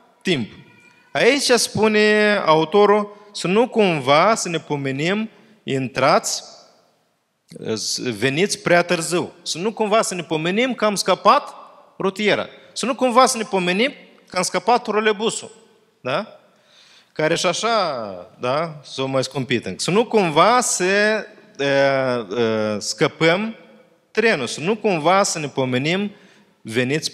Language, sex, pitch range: Romanian, male, 135-210 Hz